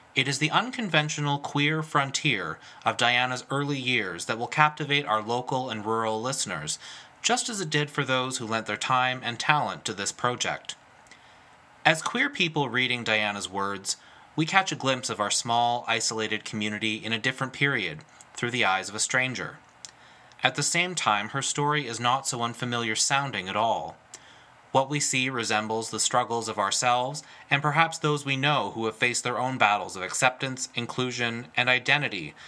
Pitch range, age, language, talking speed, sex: 110-140 Hz, 30-49, English, 175 wpm, male